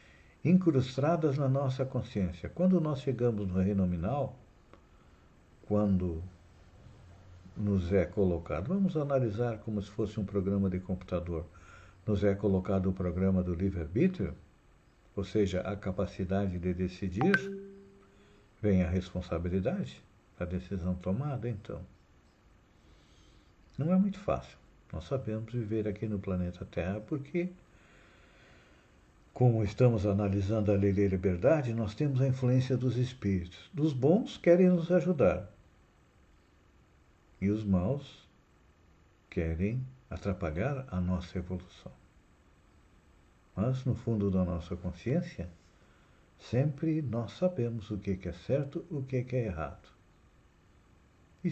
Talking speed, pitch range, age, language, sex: 115 wpm, 90-125 Hz, 60-79, Portuguese, male